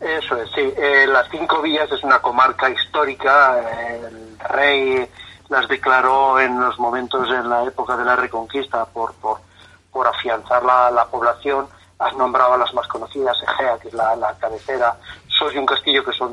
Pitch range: 120-145 Hz